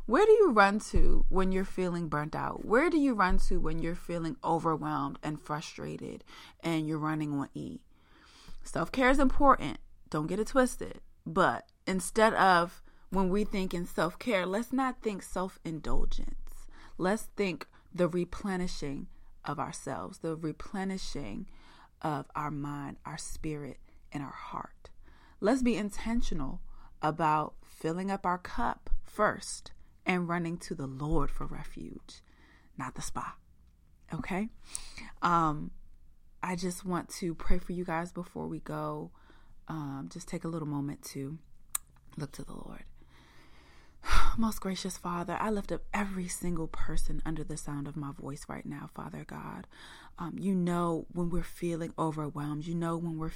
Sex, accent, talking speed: female, American, 150 wpm